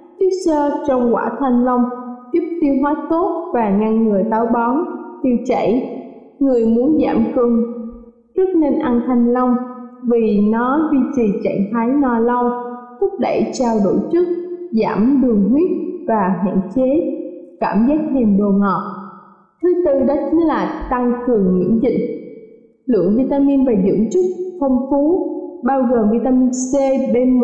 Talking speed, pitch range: 150 wpm, 235-295 Hz